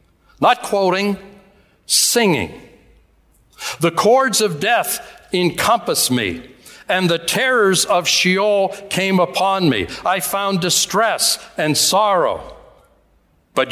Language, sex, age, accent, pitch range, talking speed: English, male, 60-79, American, 165-225 Hz, 100 wpm